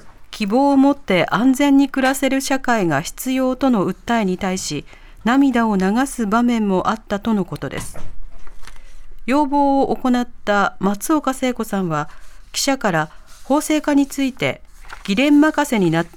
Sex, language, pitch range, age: female, Japanese, 185-260 Hz, 40-59